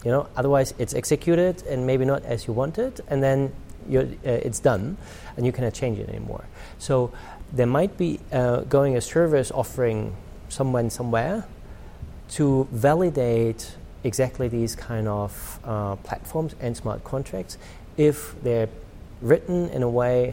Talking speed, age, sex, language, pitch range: 155 wpm, 40-59, male, English, 105-135 Hz